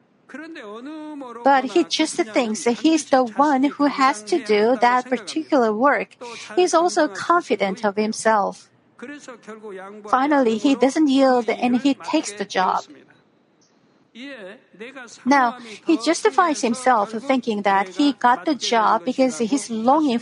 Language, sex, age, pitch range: Korean, female, 50-69, 215-280 Hz